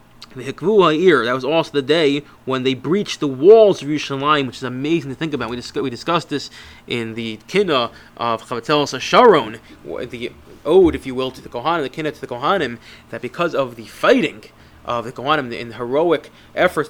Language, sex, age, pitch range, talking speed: English, male, 20-39, 125-160 Hz, 200 wpm